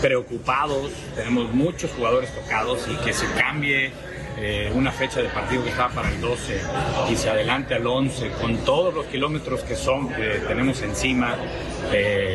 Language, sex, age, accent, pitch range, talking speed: English, male, 40-59, Mexican, 120-145 Hz, 165 wpm